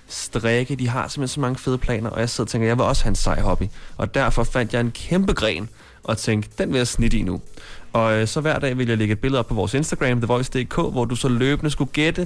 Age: 20-39